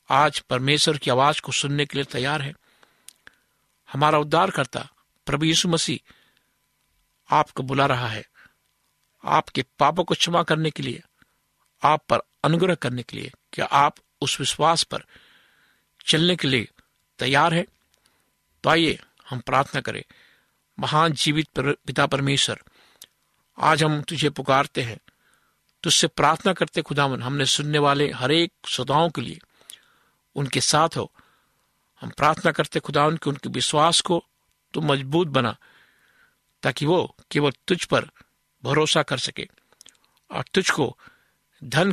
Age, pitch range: 60-79, 135-160 Hz